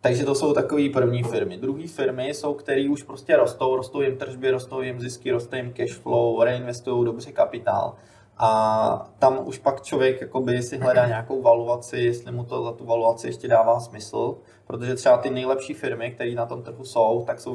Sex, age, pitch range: male, 20-39, 115-130 Hz